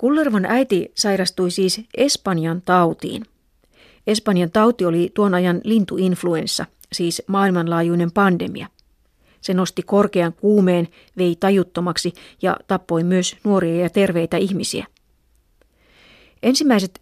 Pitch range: 175-200 Hz